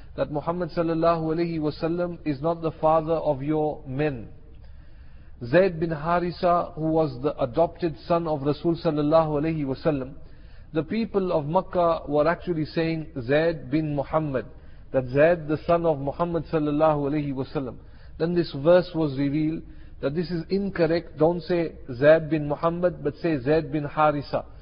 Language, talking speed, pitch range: English, 155 wpm, 150-175 Hz